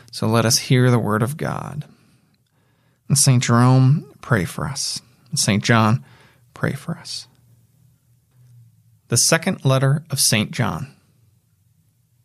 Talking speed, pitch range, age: 120 wpm, 120-145 Hz, 30-49